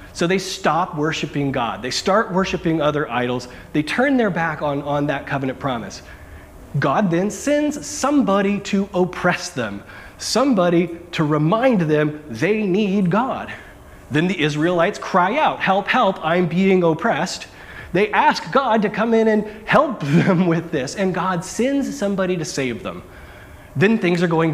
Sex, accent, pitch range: male, American, 125-190 Hz